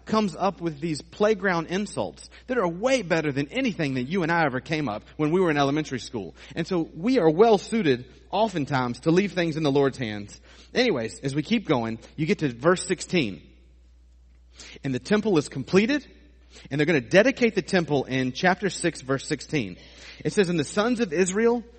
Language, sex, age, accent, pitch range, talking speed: English, male, 30-49, American, 125-190 Hz, 200 wpm